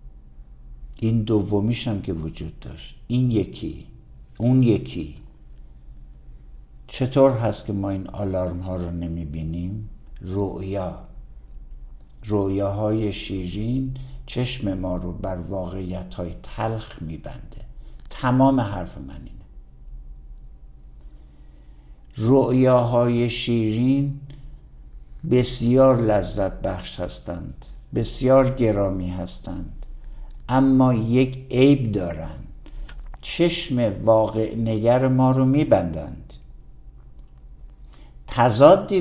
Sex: male